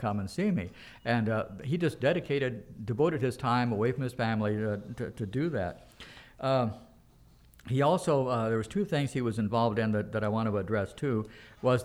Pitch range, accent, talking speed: 110-130 Hz, American, 210 wpm